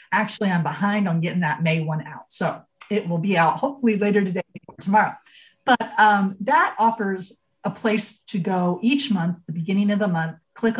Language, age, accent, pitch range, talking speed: English, 40-59, American, 175-230 Hz, 195 wpm